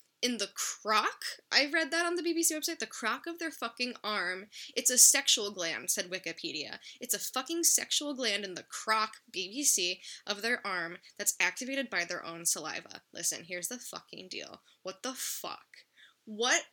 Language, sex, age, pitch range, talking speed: English, female, 10-29, 200-290 Hz, 175 wpm